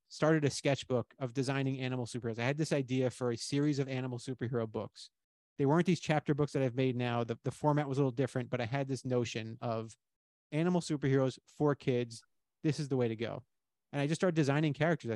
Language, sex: English, male